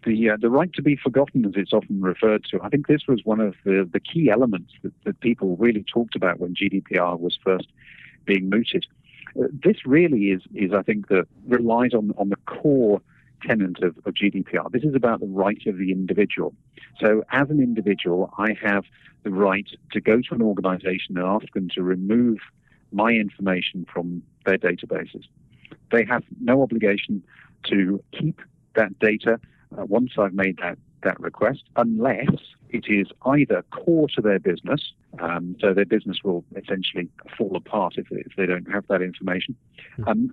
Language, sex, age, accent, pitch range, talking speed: English, male, 50-69, British, 95-120 Hz, 180 wpm